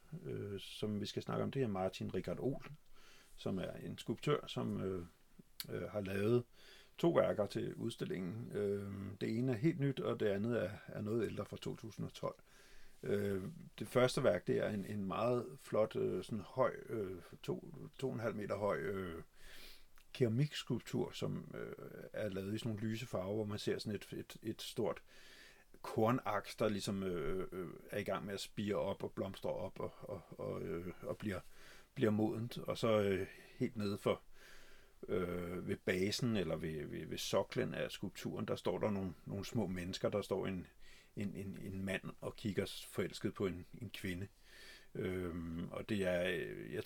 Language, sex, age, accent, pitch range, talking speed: Danish, male, 50-69, native, 95-115 Hz, 180 wpm